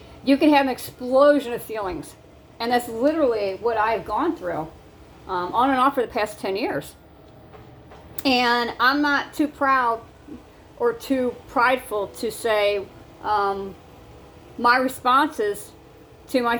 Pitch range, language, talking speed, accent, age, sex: 195-260 Hz, English, 135 wpm, American, 50-69, female